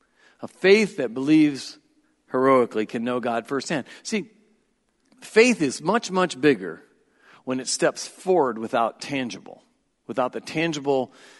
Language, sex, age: English, male, 50-69